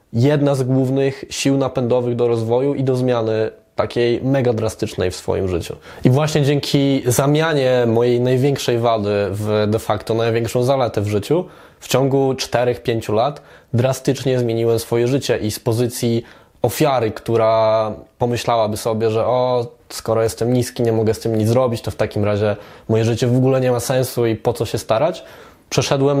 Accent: native